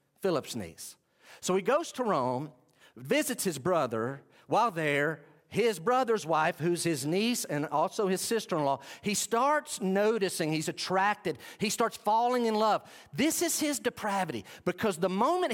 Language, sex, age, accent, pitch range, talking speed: English, male, 50-69, American, 160-240 Hz, 150 wpm